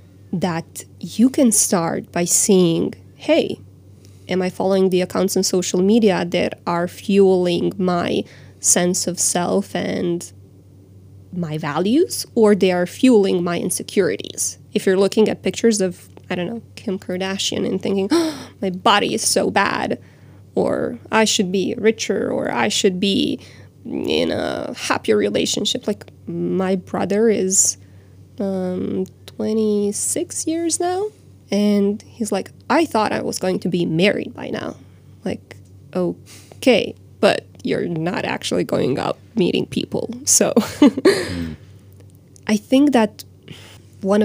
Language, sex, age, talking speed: Croatian, female, 20-39, 135 wpm